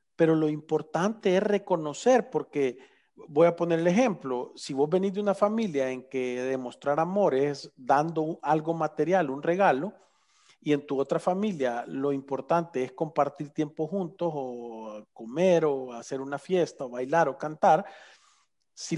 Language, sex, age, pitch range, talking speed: Spanish, male, 40-59, 150-190 Hz, 155 wpm